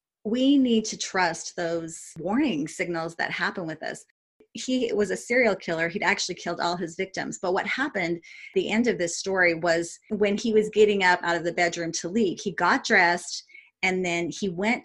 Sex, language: female, English